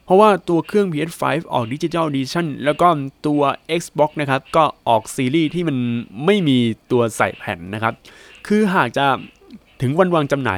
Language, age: Thai, 20-39